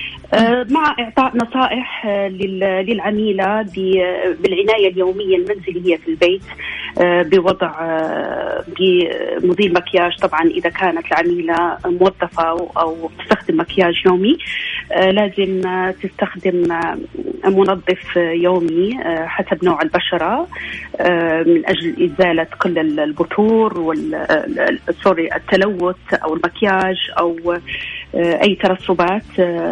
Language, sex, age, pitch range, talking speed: Arabic, female, 30-49, 175-215 Hz, 85 wpm